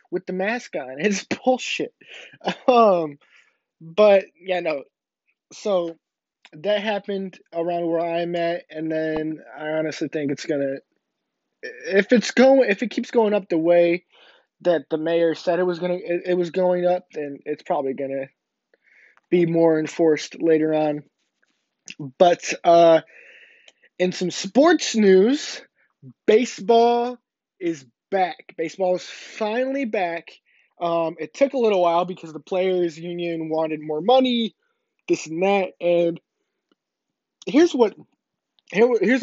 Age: 20-39